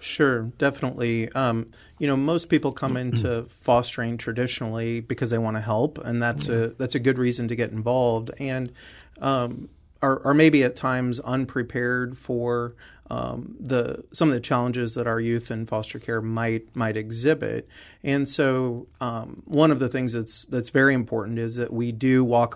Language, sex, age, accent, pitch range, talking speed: English, male, 30-49, American, 115-135 Hz, 175 wpm